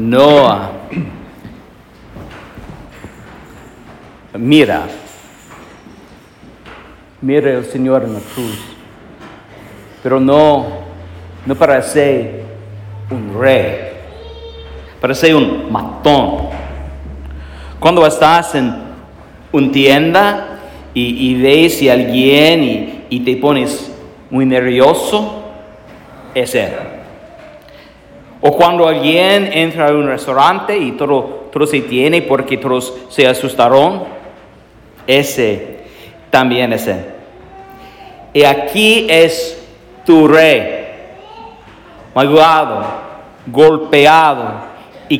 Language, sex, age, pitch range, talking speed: English, male, 50-69, 110-160 Hz, 85 wpm